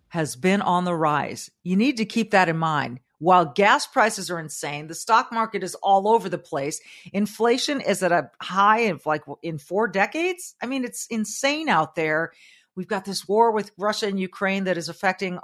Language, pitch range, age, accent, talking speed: English, 165-215 Hz, 40-59, American, 200 wpm